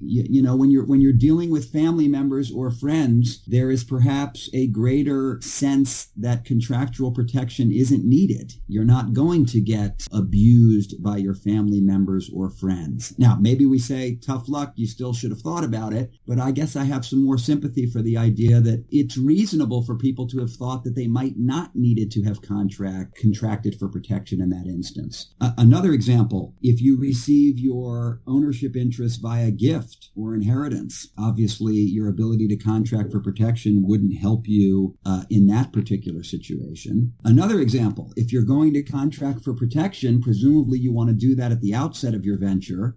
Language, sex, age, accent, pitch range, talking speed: English, male, 50-69, American, 110-135 Hz, 180 wpm